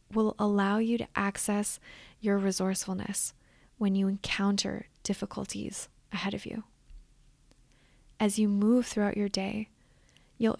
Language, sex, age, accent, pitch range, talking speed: English, female, 20-39, American, 195-215 Hz, 120 wpm